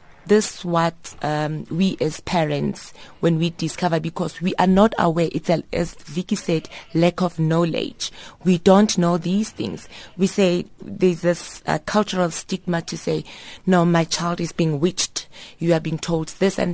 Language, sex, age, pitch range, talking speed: English, female, 30-49, 165-195 Hz, 170 wpm